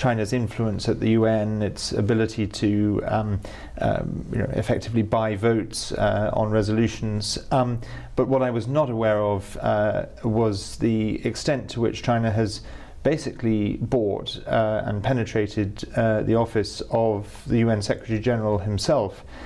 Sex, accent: male, British